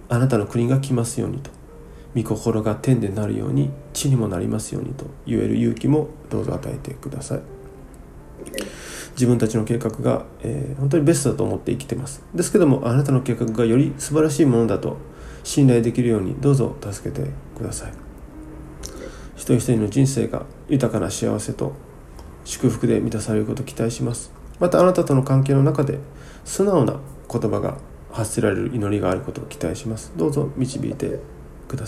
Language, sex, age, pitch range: Japanese, male, 40-59, 105-135 Hz